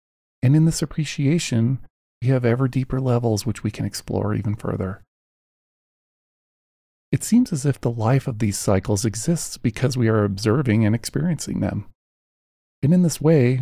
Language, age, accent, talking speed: English, 40-59, American, 160 wpm